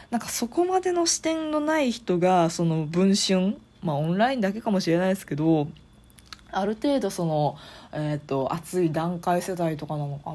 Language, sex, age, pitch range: Japanese, female, 20-39, 165-240 Hz